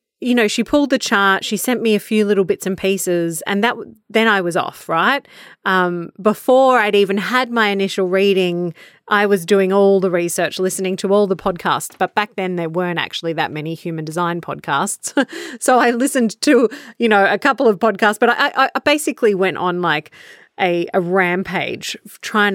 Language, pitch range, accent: English, 180-225 Hz, Australian